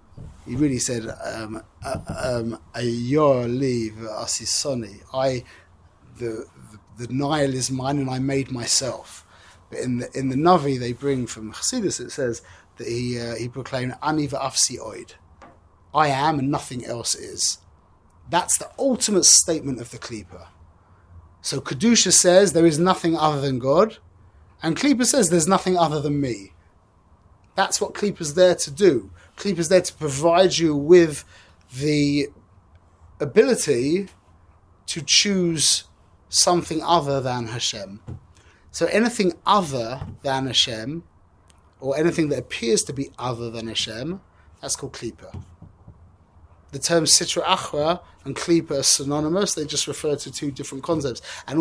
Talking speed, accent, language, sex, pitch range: 135 wpm, British, English, male, 100-160 Hz